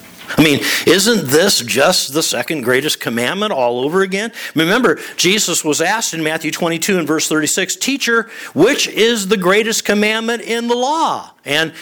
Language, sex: English, male